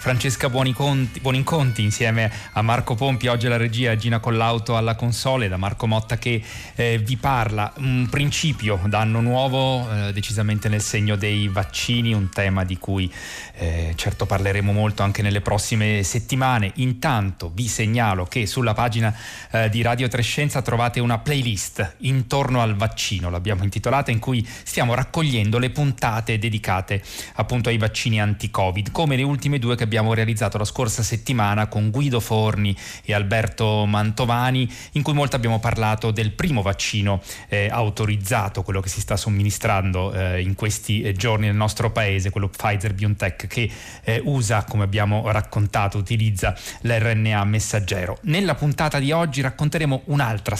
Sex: male